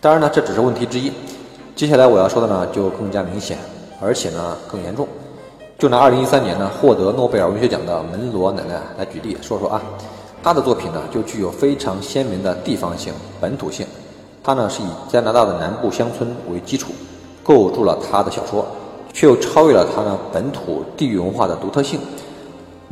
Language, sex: Chinese, male